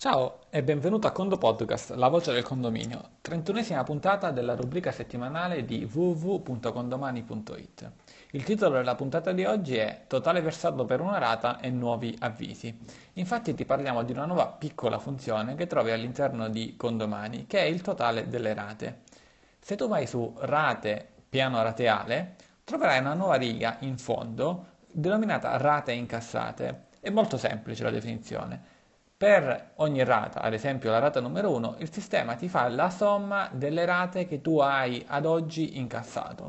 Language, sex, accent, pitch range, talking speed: Italian, male, native, 115-165 Hz, 155 wpm